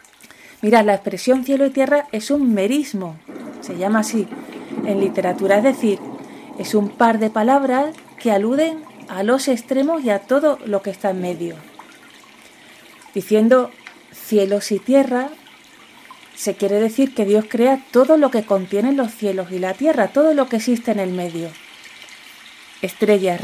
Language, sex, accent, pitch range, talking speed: Spanish, female, Spanish, 185-250 Hz, 155 wpm